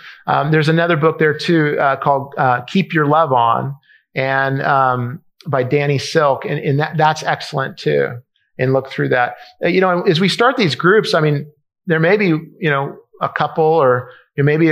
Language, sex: English, male